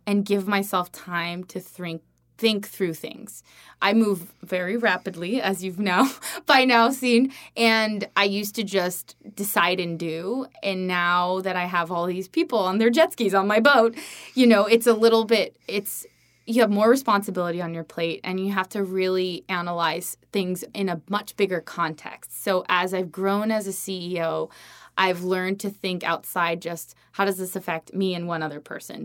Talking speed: 185 wpm